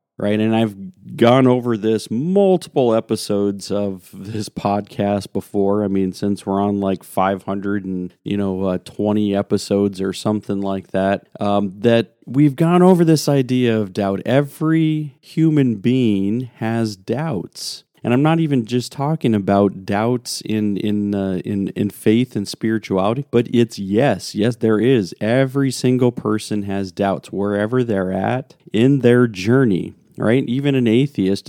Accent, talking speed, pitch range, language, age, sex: American, 155 wpm, 100-130 Hz, English, 40-59, male